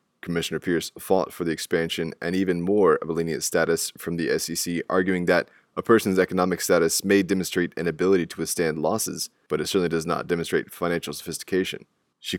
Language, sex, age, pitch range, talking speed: English, male, 20-39, 80-90 Hz, 185 wpm